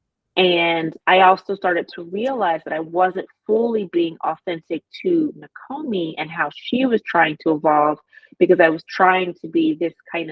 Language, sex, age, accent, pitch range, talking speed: English, female, 30-49, American, 160-190 Hz, 170 wpm